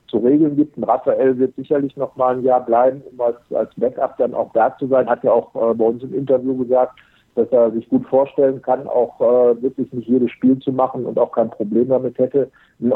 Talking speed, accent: 235 wpm, German